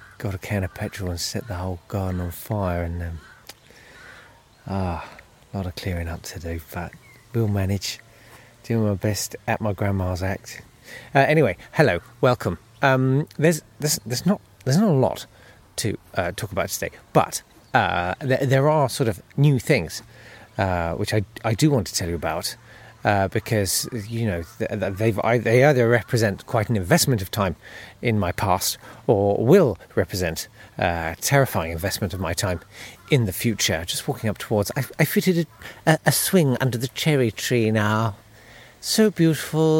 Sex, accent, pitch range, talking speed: male, British, 100-130 Hz, 175 wpm